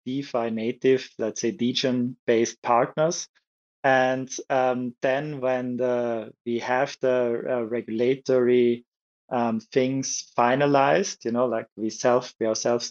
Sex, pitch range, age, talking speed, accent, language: male, 115-130 Hz, 20-39, 125 wpm, German, English